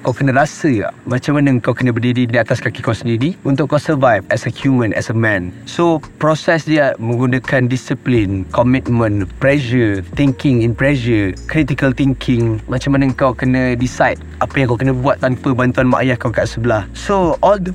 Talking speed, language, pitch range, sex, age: 185 wpm, Malay, 115-145 Hz, male, 20-39